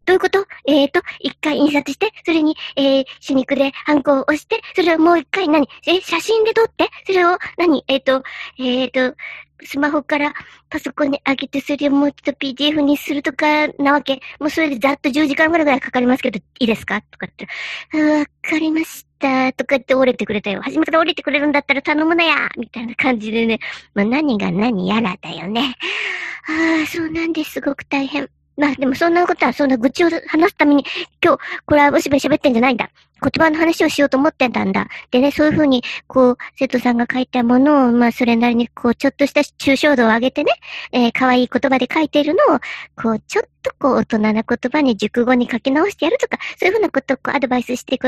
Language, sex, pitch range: Japanese, male, 245-310 Hz